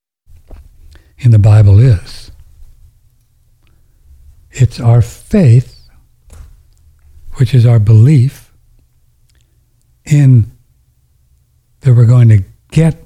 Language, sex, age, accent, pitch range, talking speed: English, male, 60-79, American, 105-125 Hz, 80 wpm